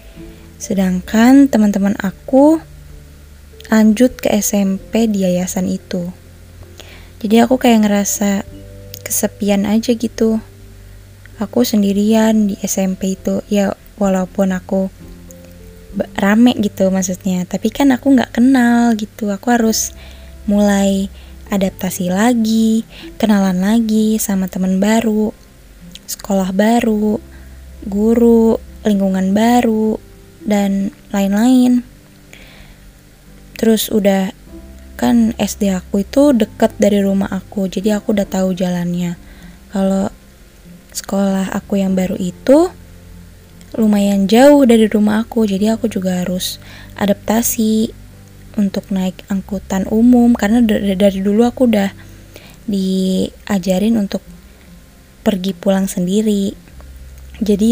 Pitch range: 180-220 Hz